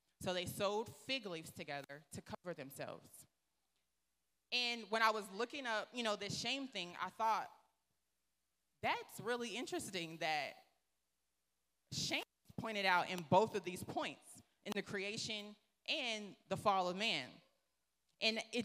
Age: 20-39